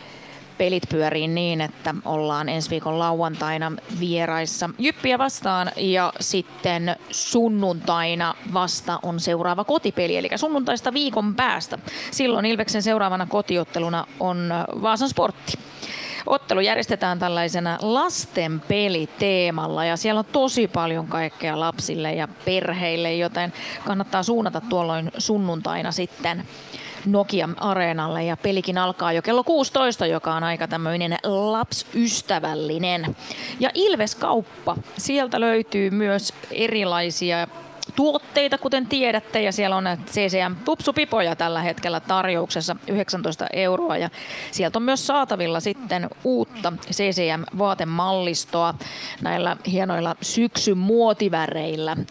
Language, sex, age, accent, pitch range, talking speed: Finnish, female, 30-49, native, 170-215 Hz, 105 wpm